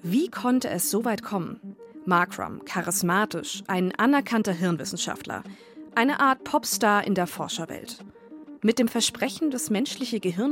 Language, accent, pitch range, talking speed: German, German, 175-235 Hz, 130 wpm